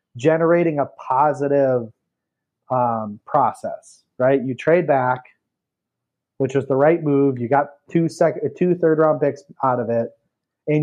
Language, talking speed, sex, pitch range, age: English, 145 wpm, male, 130-150 Hz, 30-49